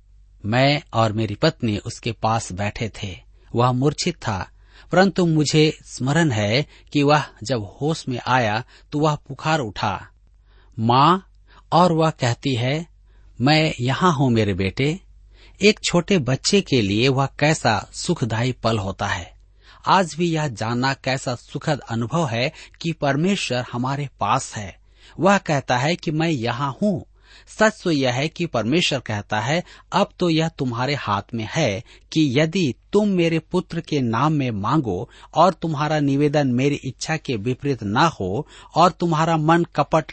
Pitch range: 110-160 Hz